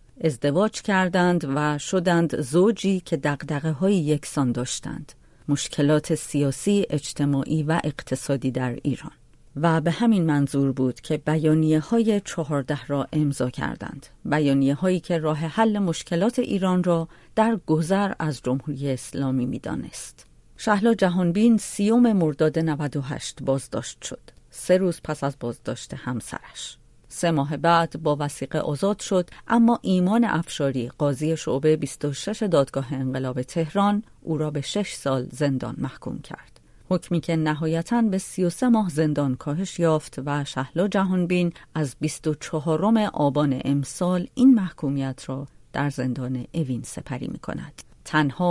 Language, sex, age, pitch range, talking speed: Persian, female, 40-59, 140-180 Hz, 130 wpm